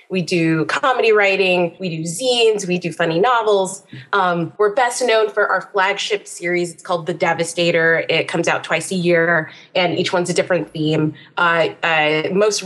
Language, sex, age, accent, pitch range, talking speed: English, female, 20-39, American, 165-195 Hz, 180 wpm